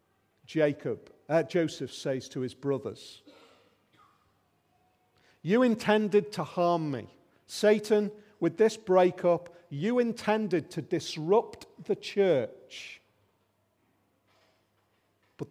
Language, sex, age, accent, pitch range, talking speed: English, male, 40-59, British, 145-215 Hz, 90 wpm